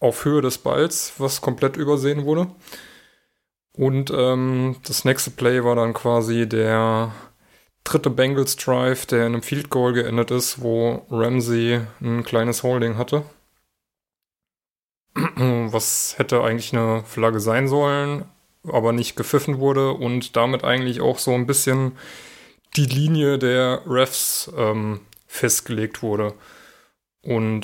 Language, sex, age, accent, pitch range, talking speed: German, male, 20-39, German, 115-140 Hz, 125 wpm